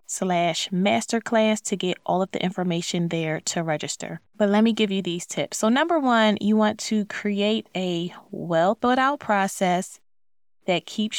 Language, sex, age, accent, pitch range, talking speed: English, female, 20-39, American, 175-210 Hz, 160 wpm